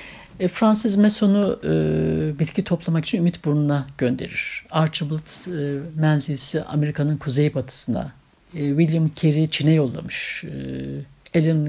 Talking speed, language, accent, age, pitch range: 115 wpm, Turkish, native, 60-79, 145-195 Hz